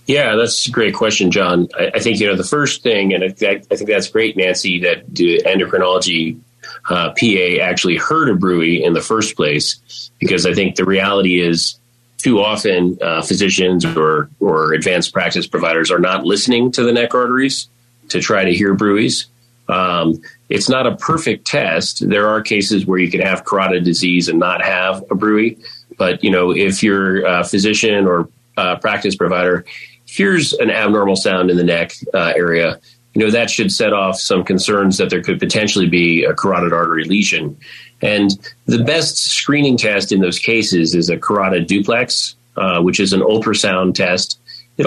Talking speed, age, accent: 180 wpm, 30-49, American